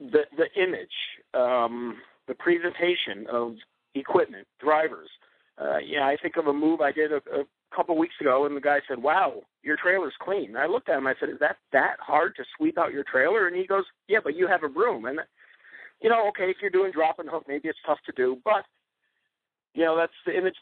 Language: English